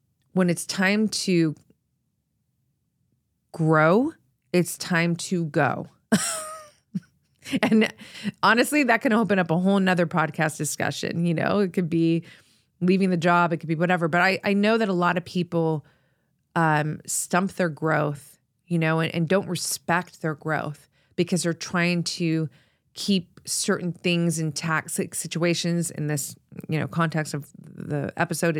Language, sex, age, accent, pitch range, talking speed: English, female, 30-49, American, 155-185 Hz, 150 wpm